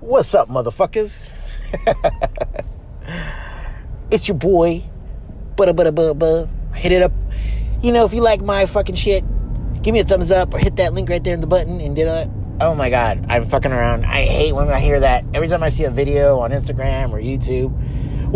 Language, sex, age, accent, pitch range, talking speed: English, male, 30-49, American, 120-145 Hz, 185 wpm